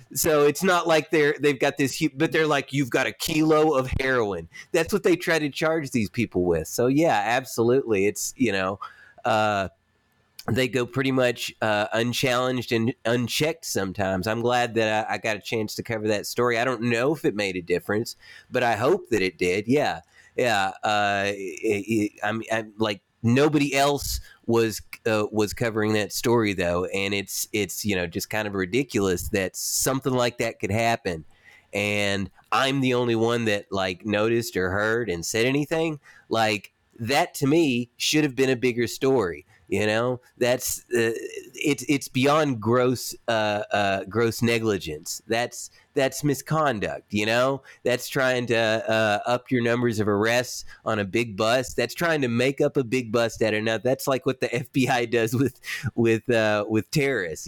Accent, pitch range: American, 110-135 Hz